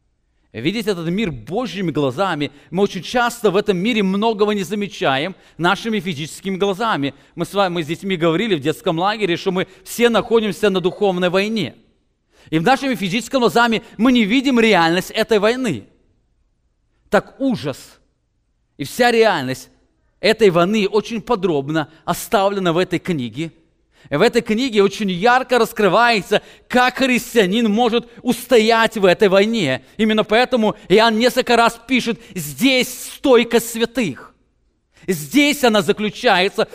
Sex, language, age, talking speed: male, English, 30-49, 135 wpm